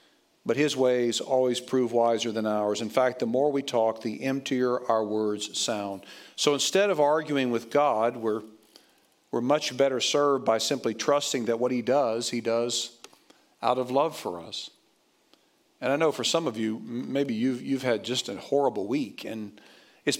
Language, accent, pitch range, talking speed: English, American, 120-165 Hz, 180 wpm